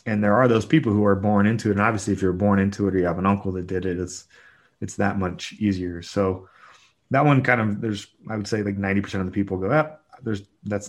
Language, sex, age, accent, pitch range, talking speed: English, male, 30-49, American, 95-110 Hz, 270 wpm